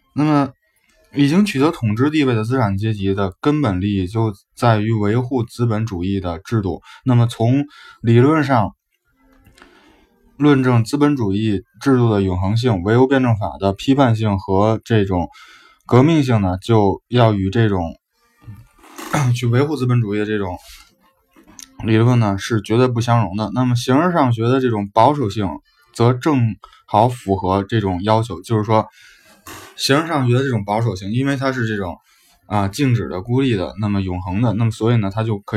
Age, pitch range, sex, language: 20-39, 100-130 Hz, male, Chinese